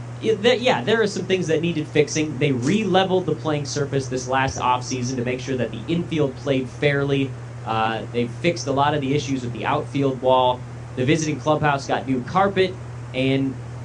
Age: 30-49